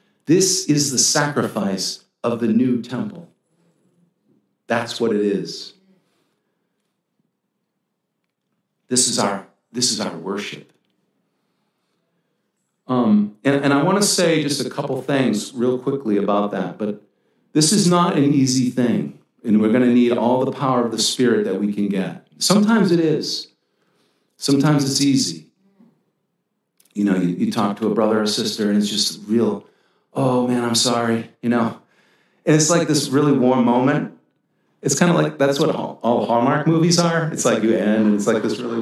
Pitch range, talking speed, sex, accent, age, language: 120-175 Hz, 165 wpm, male, American, 50-69, English